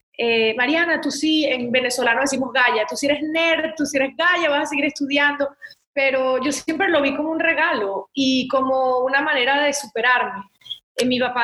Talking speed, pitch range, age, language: 195 wpm, 250-300 Hz, 20-39, English